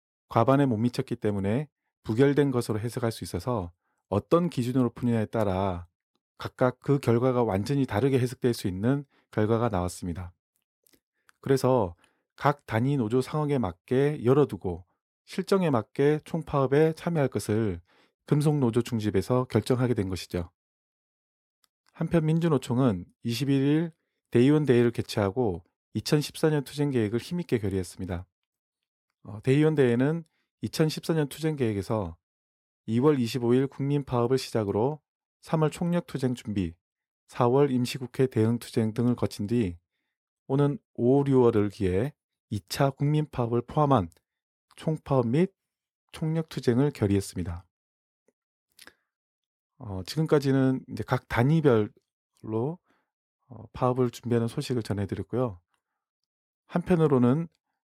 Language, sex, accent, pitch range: Korean, male, native, 105-140 Hz